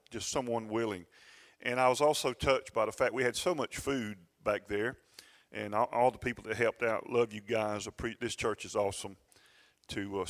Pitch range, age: 110-135 Hz, 40-59